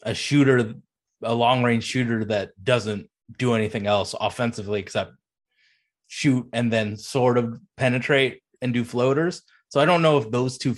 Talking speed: 160 wpm